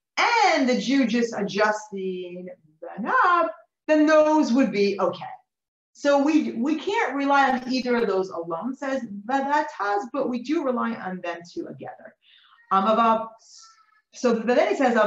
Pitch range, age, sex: 185-275 Hz, 30-49, female